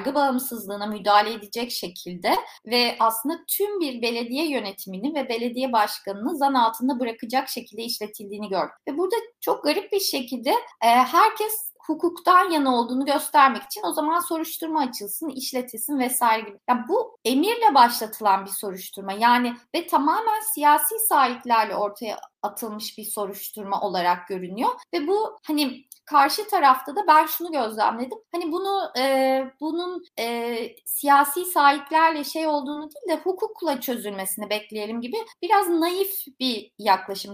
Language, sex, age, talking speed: Turkish, female, 30-49, 135 wpm